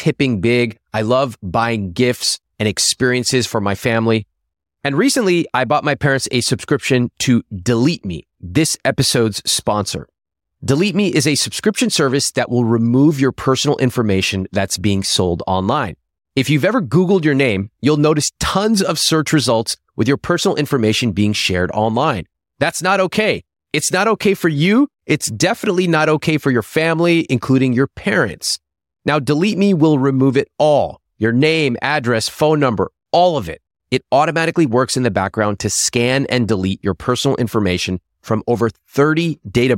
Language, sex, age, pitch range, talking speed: English, male, 30-49, 105-155 Hz, 165 wpm